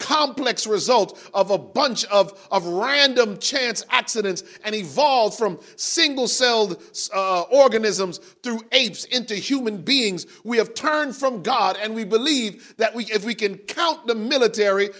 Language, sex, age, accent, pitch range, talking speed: English, male, 40-59, American, 180-255 Hz, 150 wpm